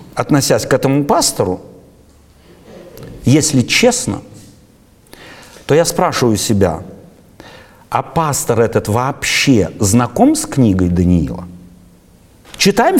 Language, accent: Russian, native